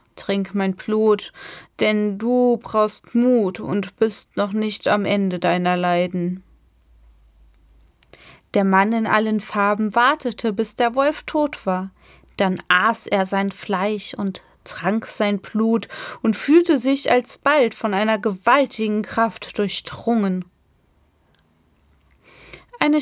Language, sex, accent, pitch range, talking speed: German, female, German, 195-250 Hz, 115 wpm